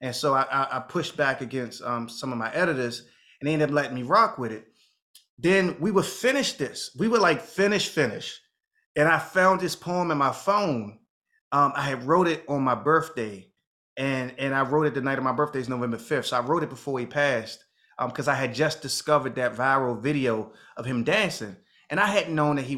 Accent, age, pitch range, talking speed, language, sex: American, 30-49, 120-150 Hz, 220 wpm, English, male